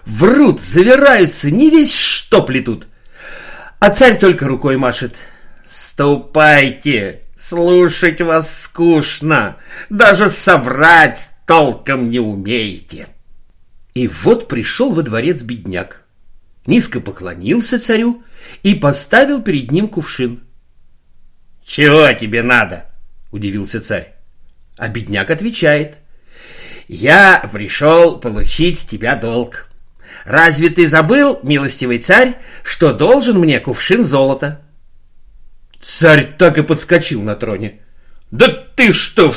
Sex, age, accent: male, 50-69, native